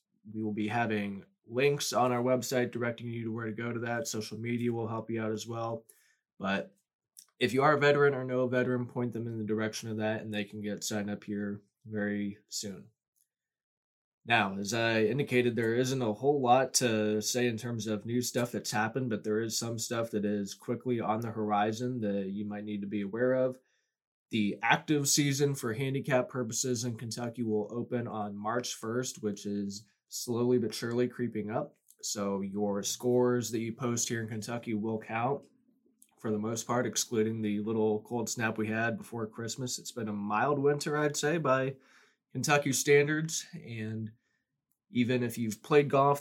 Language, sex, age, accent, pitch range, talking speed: English, male, 20-39, American, 105-125 Hz, 190 wpm